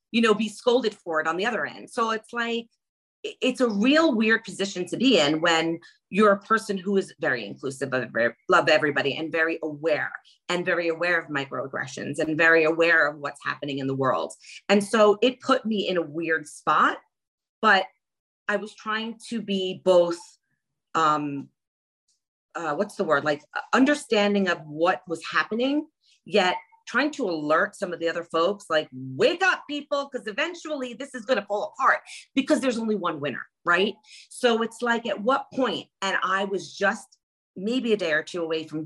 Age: 40-59